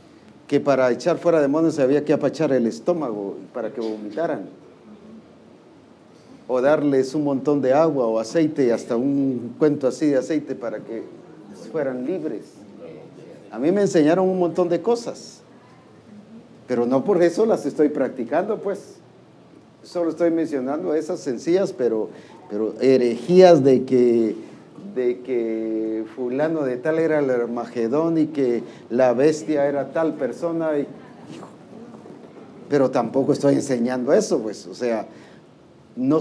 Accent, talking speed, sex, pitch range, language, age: Mexican, 140 wpm, male, 120-165 Hz, English, 50-69